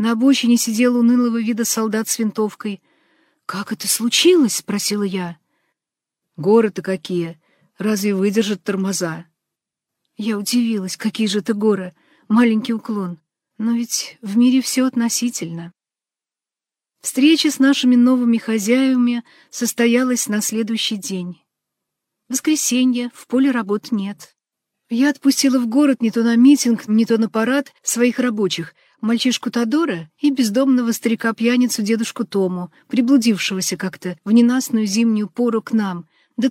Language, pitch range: Russian, 210-255 Hz